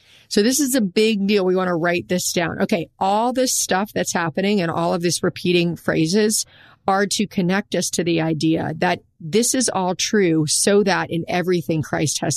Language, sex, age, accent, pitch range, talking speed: English, female, 40-59, American, 160-205 Hz, 205 wpm